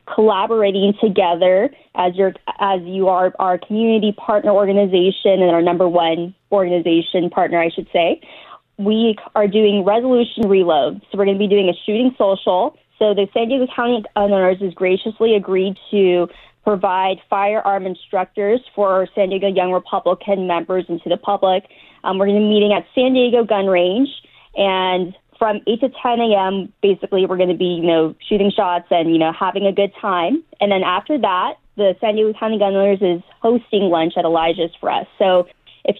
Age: 20-39